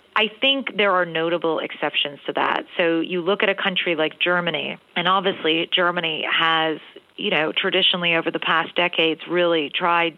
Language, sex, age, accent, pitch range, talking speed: English, female, 40-59, American, 160-185 Hz, 170 wpm